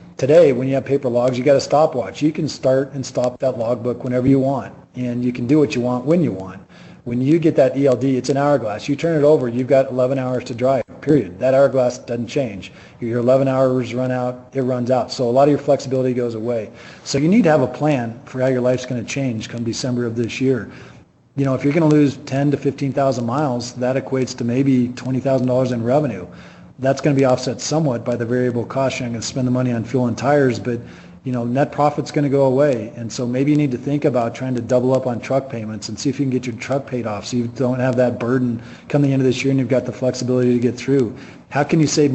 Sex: male